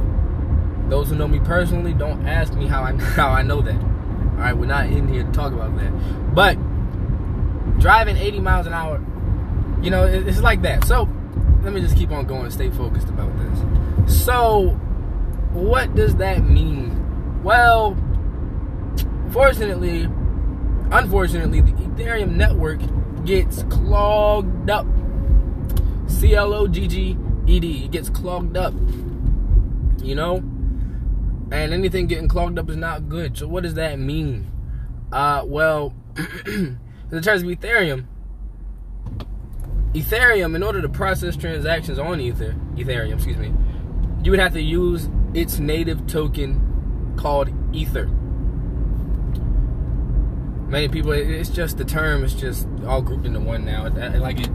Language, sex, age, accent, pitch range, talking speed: English, male, 20-39, American, 80-115 Hz, 135 wpm